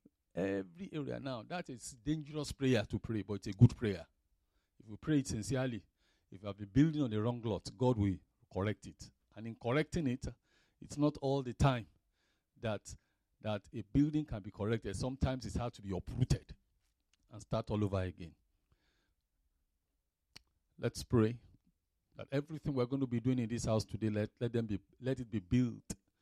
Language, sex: English, male